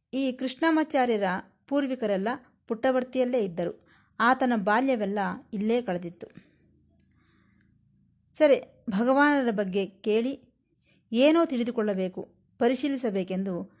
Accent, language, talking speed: native, Kannada, 70 wpm